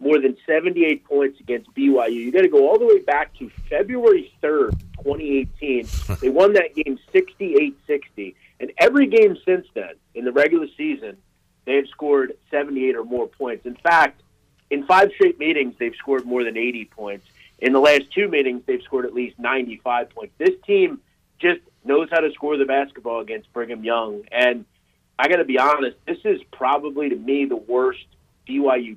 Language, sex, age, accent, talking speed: English, male, 40-59, American, 185 wpm